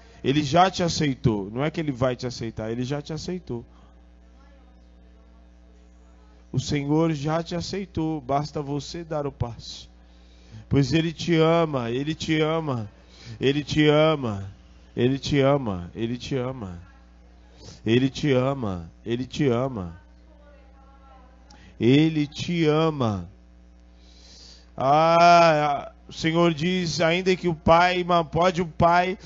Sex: male